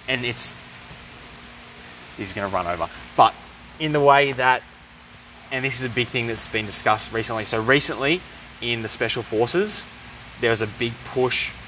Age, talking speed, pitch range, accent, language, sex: 20-39, 170 wpm, 95-120 Hz, Australian, English, male